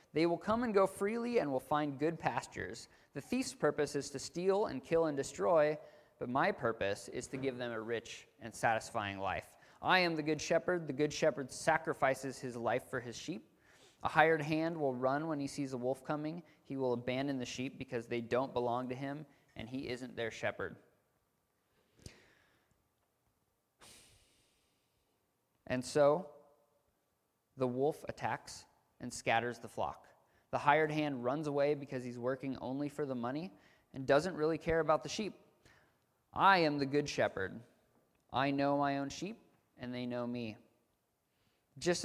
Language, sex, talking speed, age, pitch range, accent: English, male, 165 wpm, 20-39, 125-150 Hz, American